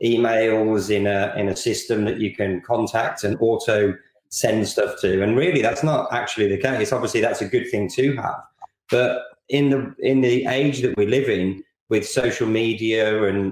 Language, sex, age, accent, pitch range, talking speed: English, male, 20-39, British, 105-125 Hz, 190 wpm